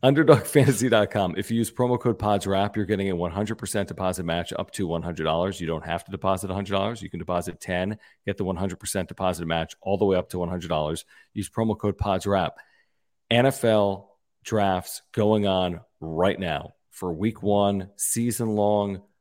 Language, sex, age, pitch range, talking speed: English, male, 40-59, 90-110 Hz, 170 wpm